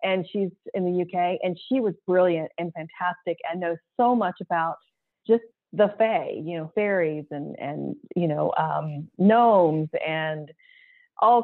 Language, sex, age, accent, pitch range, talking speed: English, female, 30-49, American, 170-225 Hz, 155 wpm